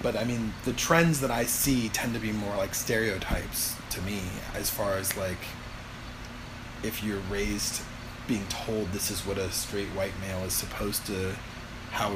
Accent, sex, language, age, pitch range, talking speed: American, male, English, 30-49, 95-120 Hz, 180 wpm